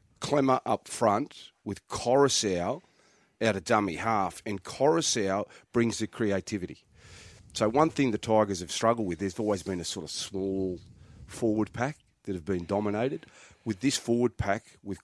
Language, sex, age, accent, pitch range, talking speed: English, male, 40-59, Australian, 90-110 Hz, 160 wpm